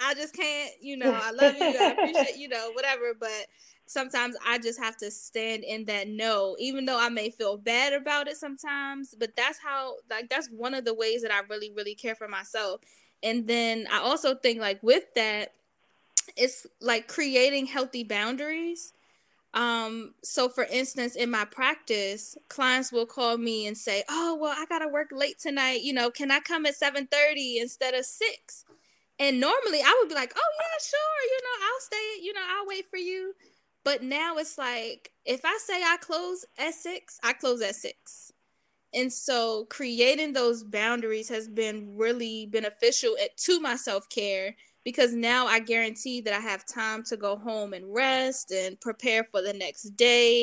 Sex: female